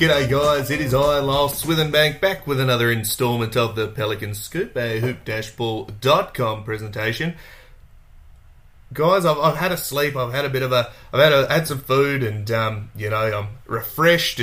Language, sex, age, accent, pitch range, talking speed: English, male, 30-49, Australian, 110-140 Hz, 175 wpm